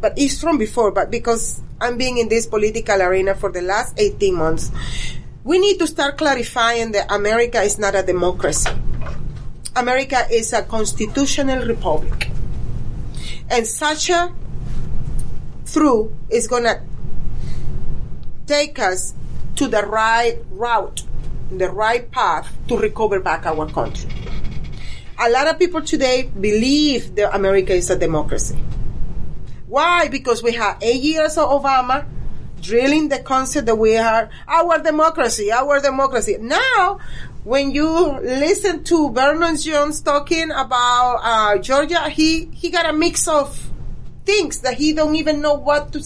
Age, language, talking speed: 40-59, English, 140 wpm